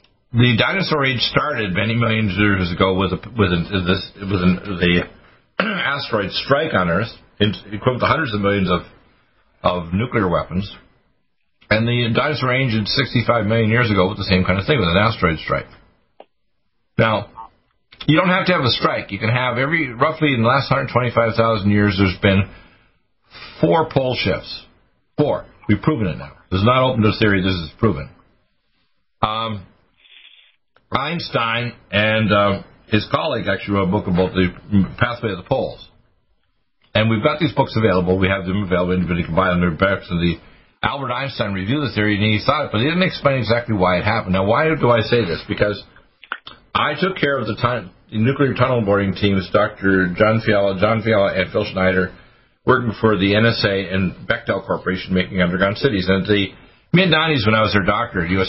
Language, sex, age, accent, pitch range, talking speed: English, male, 50-69, American, 95-120 Hz, 185 wpm